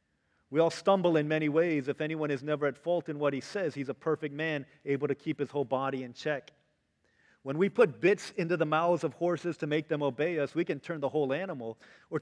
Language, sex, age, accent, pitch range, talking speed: English, male, 40-59, American, 145-185 Hz, 240 wpm